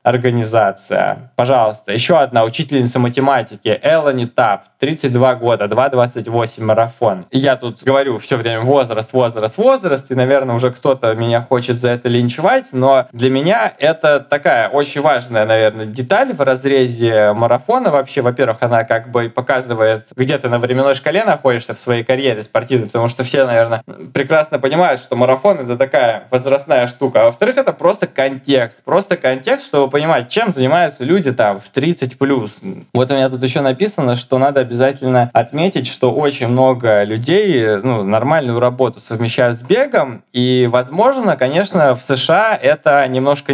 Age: 20-39